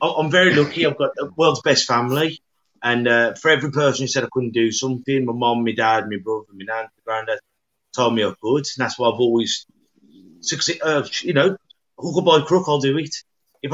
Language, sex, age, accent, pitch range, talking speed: English, male, 30-49, British, 125-150 Hz, 225 wpm